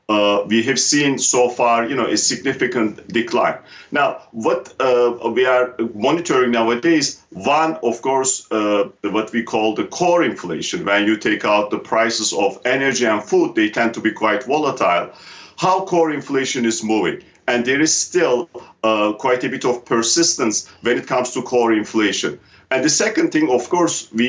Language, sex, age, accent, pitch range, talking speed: English, male, 50-69, Turkish, 115-155 Hz, 180 wpm